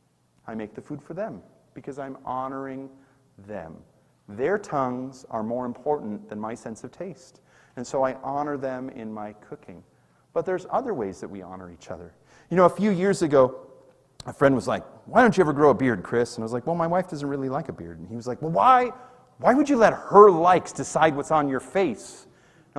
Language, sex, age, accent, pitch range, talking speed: English, male, 40-59, American, 130-200 Hz, 225 wpm